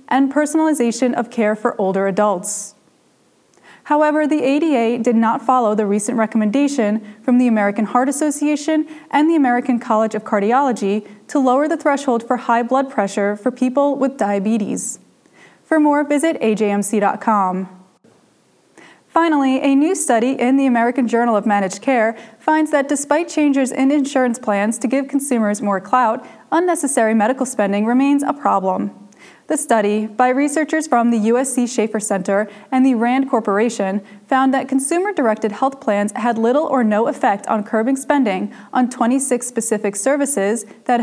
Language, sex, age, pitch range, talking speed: English, female, 20-39, 215-270 Hz, 150 wpm